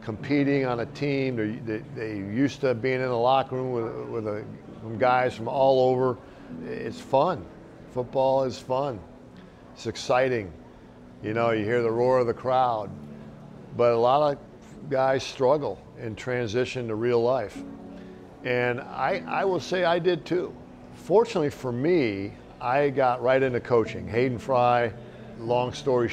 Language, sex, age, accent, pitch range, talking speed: English, male, 50-69, American, 110-135 Hz, 155 wpm